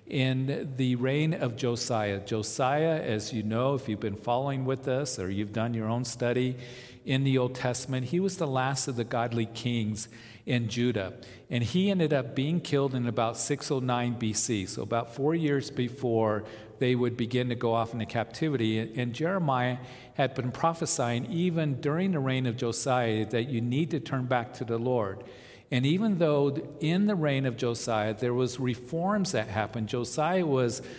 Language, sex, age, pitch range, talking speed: English, male, 50-69, 115-140 Hz, 180 wpm